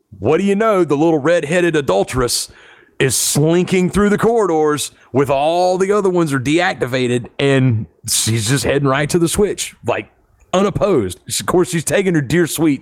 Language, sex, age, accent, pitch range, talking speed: English, male, 40-59, American, 130-180 Hz, 175 wpm